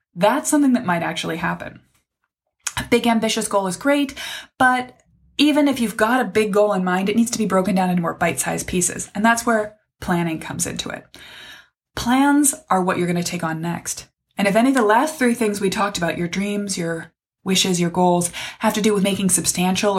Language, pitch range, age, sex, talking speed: English, 185-250 Hz, 20-39, female, 215 wpm